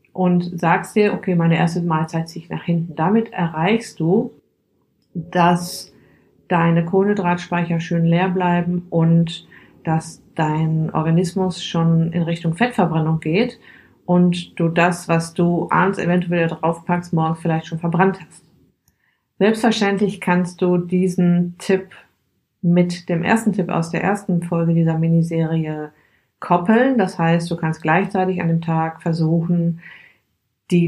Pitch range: 165-185 Hz